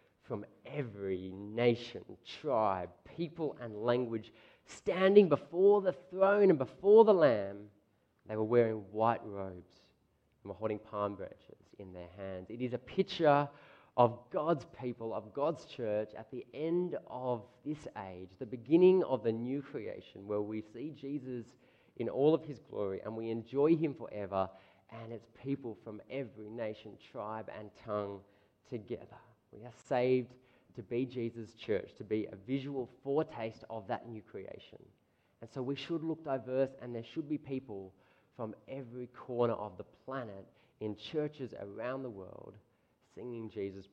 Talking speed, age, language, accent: 155 wpm, 20-39, English, Australian